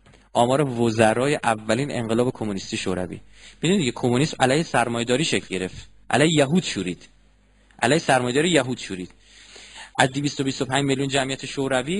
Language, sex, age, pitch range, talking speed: Persian, male, 30-49, 120-195 Hz, 120 wpm